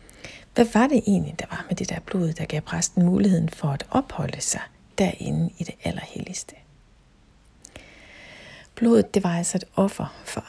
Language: Danish